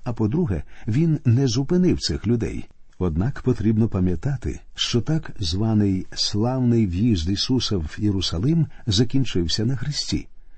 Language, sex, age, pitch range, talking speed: Ukrainian, male, 50-69, 100-135 Hz, 120 wpm